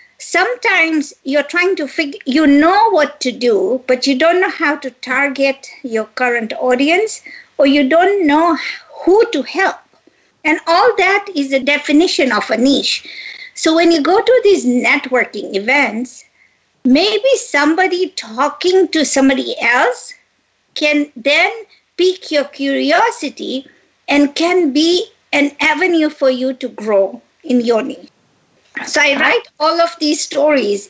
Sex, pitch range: female, 270-340 Hz